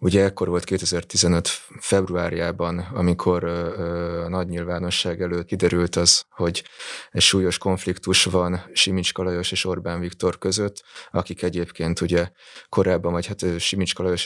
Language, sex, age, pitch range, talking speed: Hungarian, male, 20-39, 85-95 Hz, 120 wpm